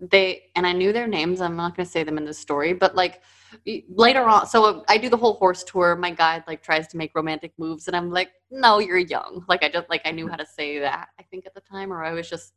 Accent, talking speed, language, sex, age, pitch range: American, 275 wpm, English, female, 20-39, 170-210 Hz